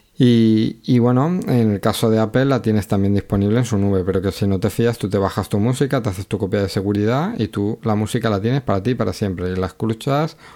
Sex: male